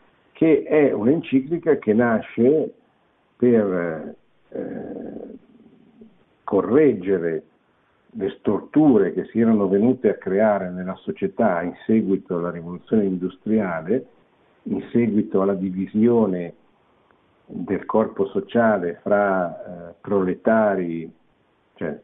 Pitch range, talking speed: 90-115 Hz, 95 wpm